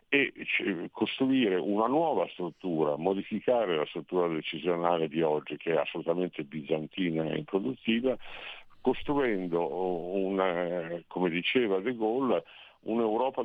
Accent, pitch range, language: native, 85-110 Hz, Italian